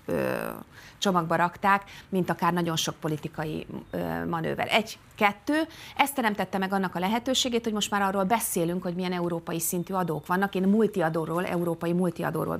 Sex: female